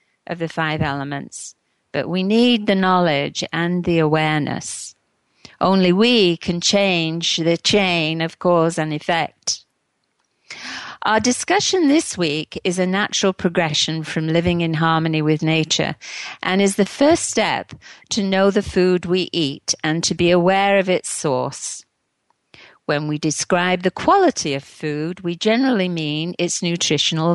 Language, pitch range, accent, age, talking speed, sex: English, 155-195 Hz, British, 50-69, 145 wpm, female